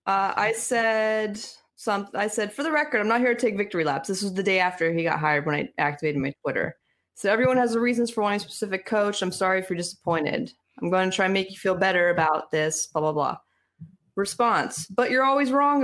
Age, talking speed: 20-39, 235 wpm